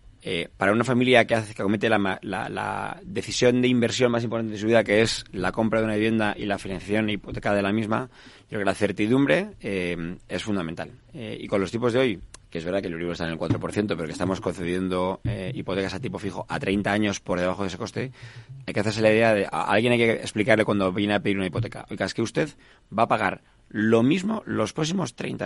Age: 30-49